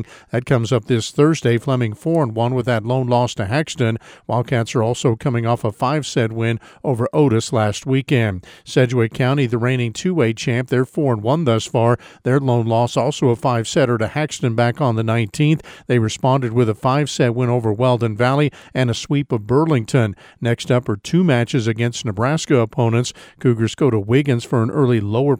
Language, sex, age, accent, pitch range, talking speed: English, male, 50-69, American, 115-140 Hz, 180 wpm